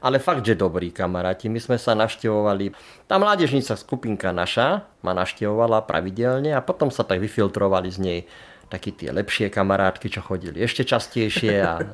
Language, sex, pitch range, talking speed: Slovak, male, 95-125 Hz, 160 wpm